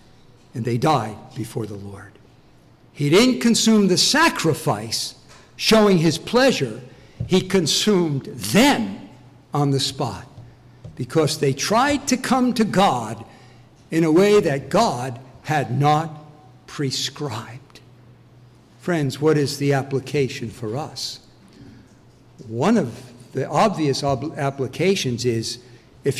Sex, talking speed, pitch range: male, 115 wpm, 125-205 Hz